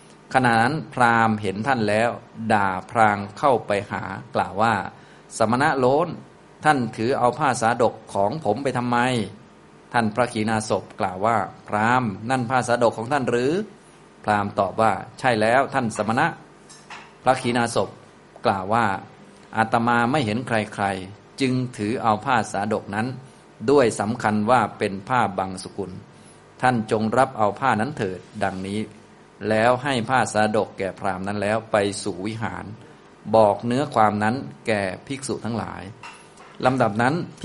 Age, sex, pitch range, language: 20-39, male, 105-125 Hz, Thai